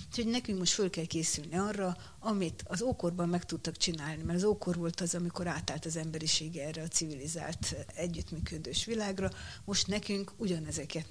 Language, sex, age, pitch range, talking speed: Hungarian, female, 60-79, 165-190 Hz, 160 wpm